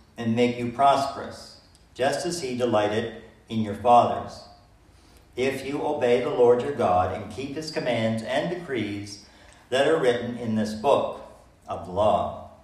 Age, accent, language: 50-69, American, English